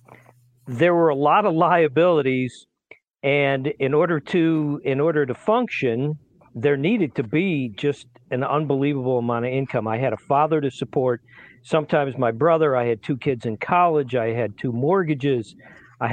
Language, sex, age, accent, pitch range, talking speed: English, male, 50-69, American, 125-155 Hz, 165 wpm